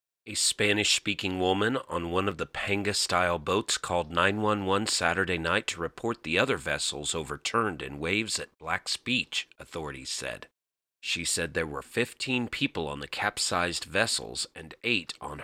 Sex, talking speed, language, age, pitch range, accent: male, 150 wpm, English, 40-59, 90-110 Hz, American